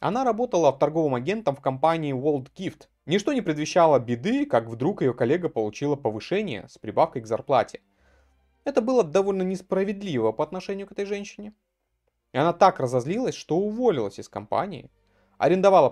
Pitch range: 125-185 Hz